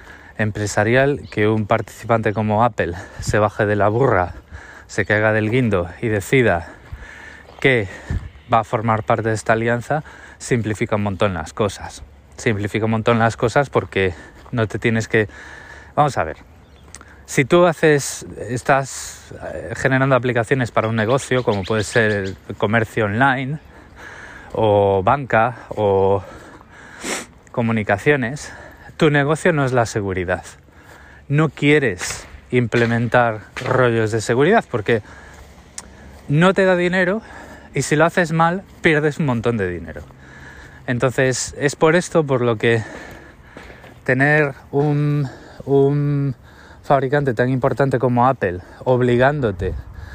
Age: 20-39